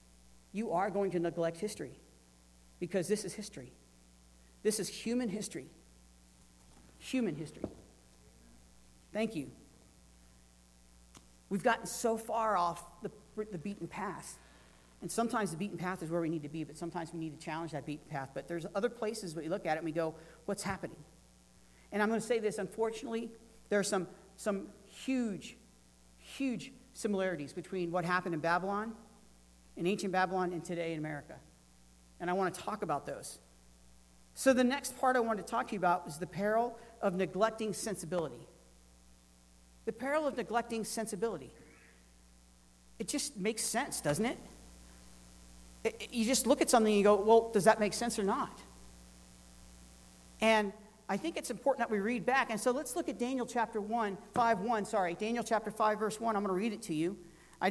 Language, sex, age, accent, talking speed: English, male, 40-59, American, 180 wpm